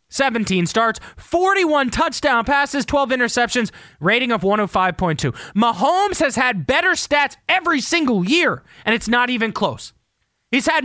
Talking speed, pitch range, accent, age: 140 wpm, 195-315 Hz, American, 20-39